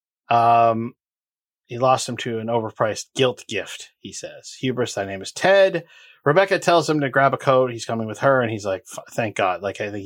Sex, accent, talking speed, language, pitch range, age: male, American, 210 wpm, English, 110-150 Hz, 30-49